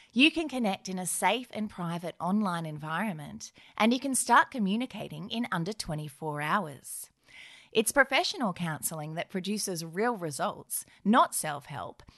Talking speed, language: 140 wpm, English